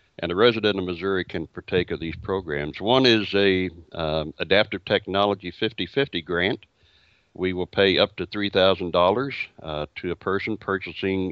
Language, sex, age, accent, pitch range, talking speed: English, male, 60-79, American, 85-105 Hz, 160 wpm